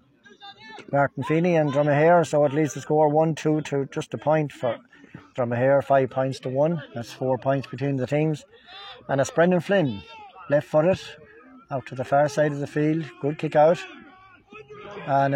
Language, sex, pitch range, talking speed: English, male, 140-165 Hz, 175 wpm